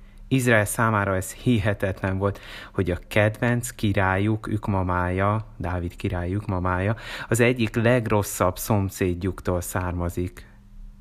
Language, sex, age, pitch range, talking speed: Hungarian, male, 30-49, 90-105 Hz, 100 wpm